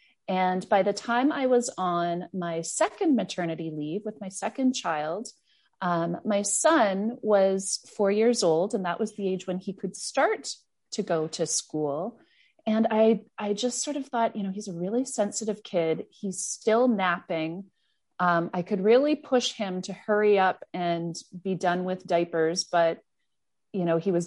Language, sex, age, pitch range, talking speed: English, female, 30-49, 165-215 Hz, 175 wpm